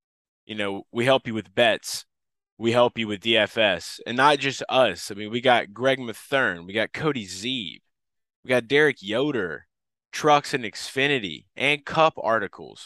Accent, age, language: American, 20-39, English